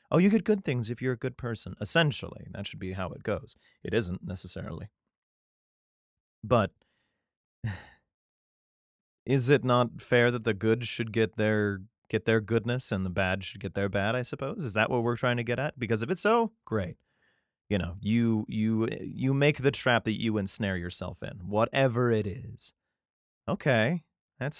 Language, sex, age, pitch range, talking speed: English, male, 30-49, 105-140 Hz, 180 wpm